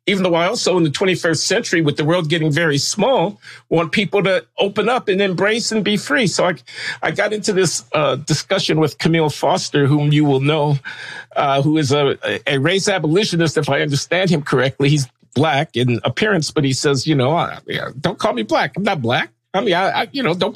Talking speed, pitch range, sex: 215 wpm, 130-180 Hz, male